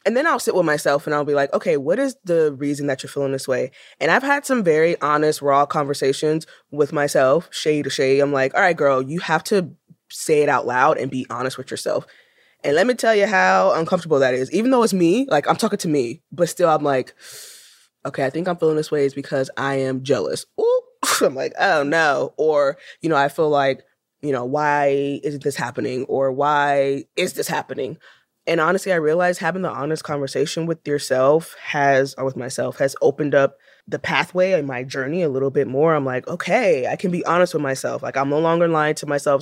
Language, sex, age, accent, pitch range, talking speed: English, female, 20-39, American, 140-175 Hz, 225 wpm